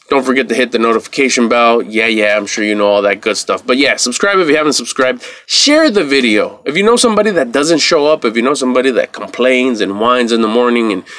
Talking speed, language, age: 250 wpm, English, 20-39